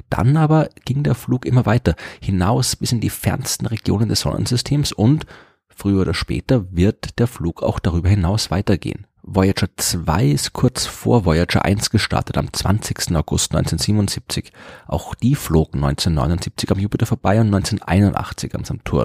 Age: 30-49